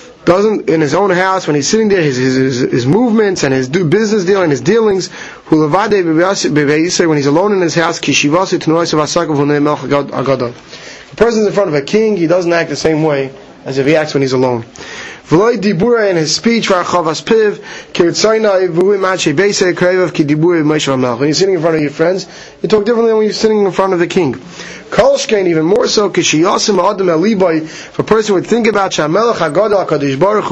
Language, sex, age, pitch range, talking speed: English, male, 30-49, 155-200 Hz, 200 wpm